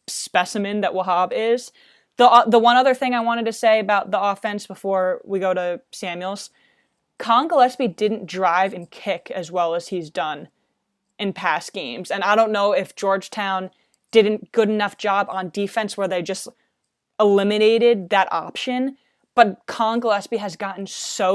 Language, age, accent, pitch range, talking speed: English, 20-39, American, 185-215 Hz, 170 wpm